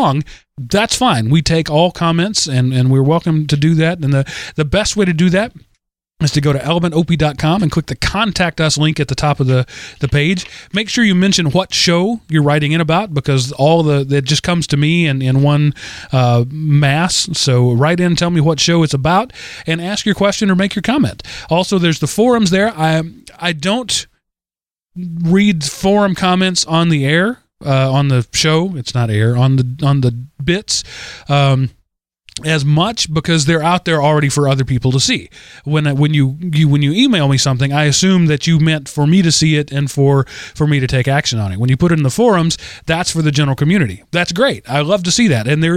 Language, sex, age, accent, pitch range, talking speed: English, male, 30-49, American, 135-175 Hz, 220 wpm